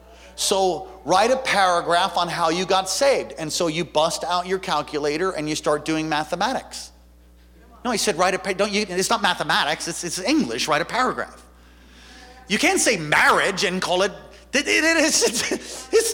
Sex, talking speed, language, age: male, 180 wpm, English, 40-59